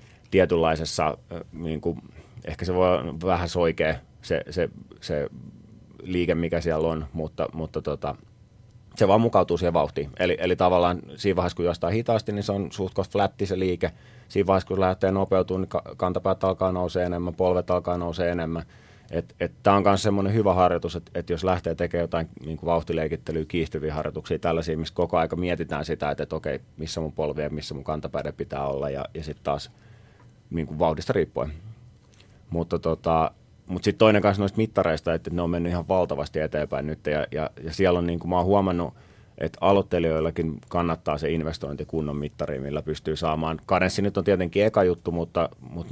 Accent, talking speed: native, 180 wpm